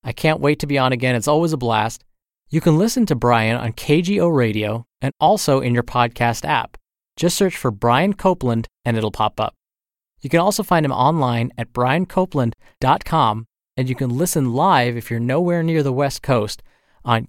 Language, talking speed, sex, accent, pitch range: English, 190 wpm, male, American, 120-170 Hz